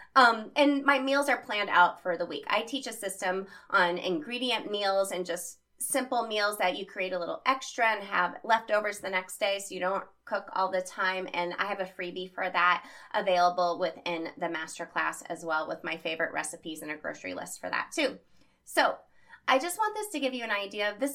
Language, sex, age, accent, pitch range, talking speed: English, female, 20-39, American, 180-260 Hz, 215 wpm